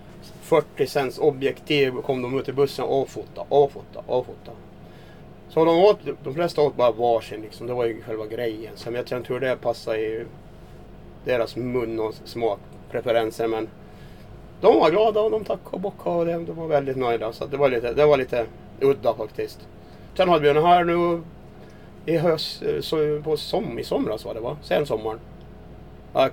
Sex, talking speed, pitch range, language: male, 175 wpm, 115-150 Hz, Swedish